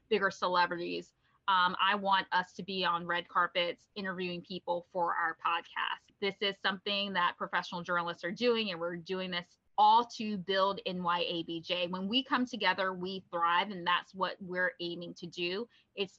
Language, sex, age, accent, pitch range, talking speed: English, female, 20-39, American, 180-220 Hz, 170 wpm